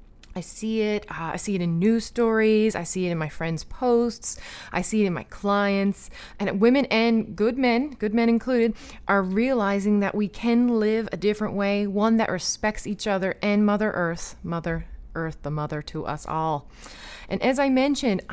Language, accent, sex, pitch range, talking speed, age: English, American, female, 190-230 Hz, 195 wpm, 30-49